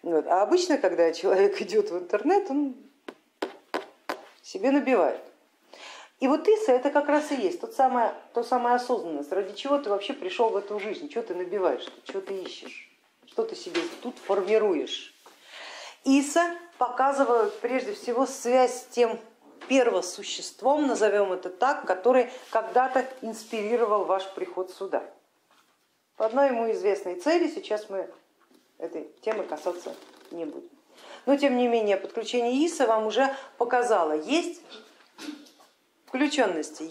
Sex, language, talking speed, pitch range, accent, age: female, Russian, 135 wpm, 200-280 Hz, native, 40-59